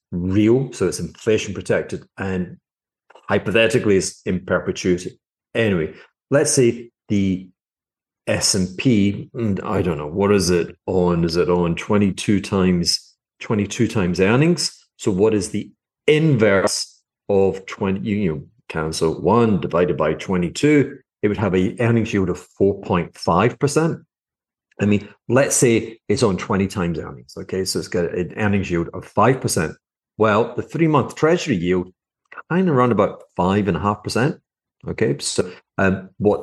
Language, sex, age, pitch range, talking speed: English, male, 40-59, 95-155 Hz, 140 wpm